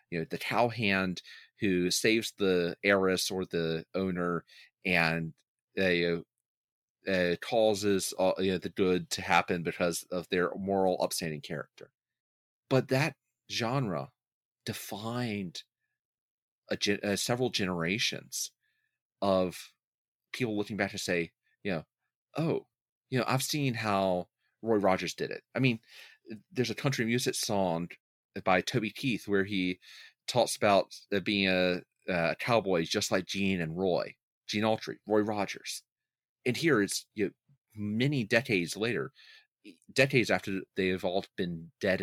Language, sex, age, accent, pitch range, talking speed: English, male, 30-49, American, 95-125 Hz, 135 wpm